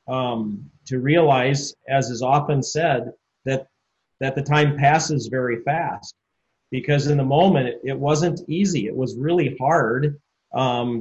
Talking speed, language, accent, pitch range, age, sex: 140 wpm, English, American, 125-145 Hz, 30-49, male